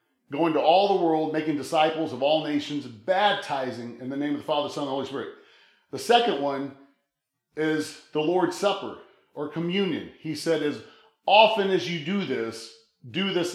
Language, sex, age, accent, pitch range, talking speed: English, male, 40-59, American, 140-180 Hz, 175 wpm